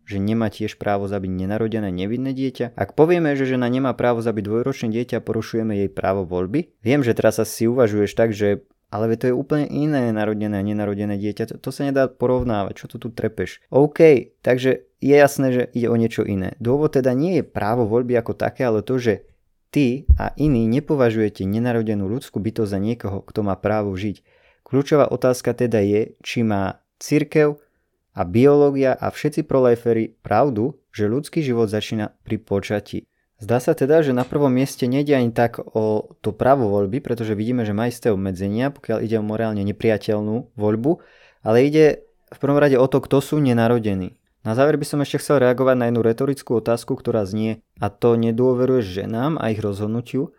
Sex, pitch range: male, 105-135 Hz